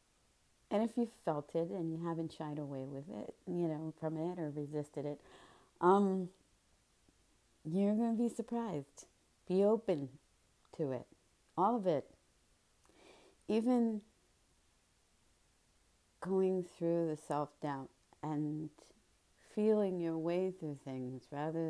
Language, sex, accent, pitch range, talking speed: English, female, American, 140-170 Hz, 120 wpm